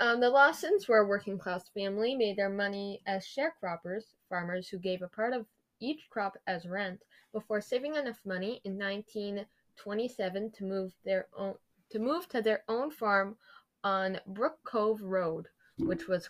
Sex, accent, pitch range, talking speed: female, American, 190-235 Hz, 170 wpm